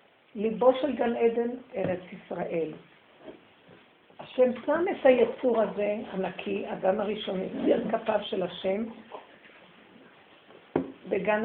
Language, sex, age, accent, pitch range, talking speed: Hebrew, female, 60-79, native, 195-255 Hz, 100 wpm